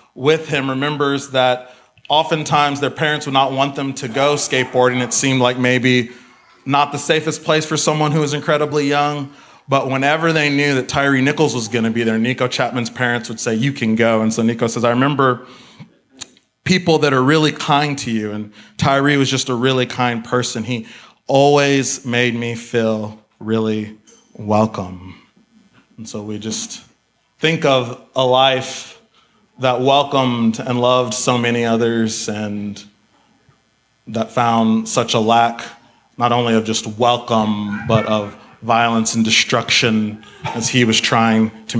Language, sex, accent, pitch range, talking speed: English, male, American, 110-135 Hz, 160 wpm